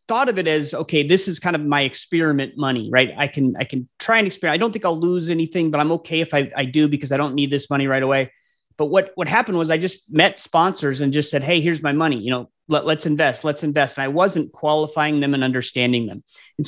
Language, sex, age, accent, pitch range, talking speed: English, male, 30-49, American, 140-165 Hz, 265 wpm